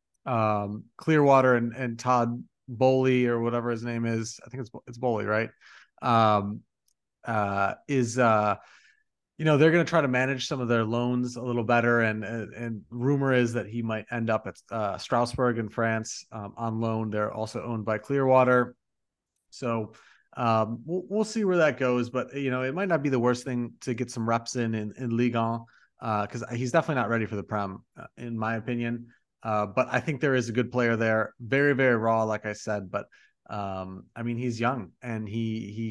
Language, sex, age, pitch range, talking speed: English, male, 30-49, 115-130 Hz, 205 wpm